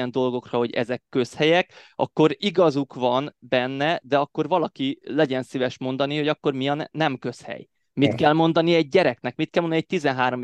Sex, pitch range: male, 130-160 Hz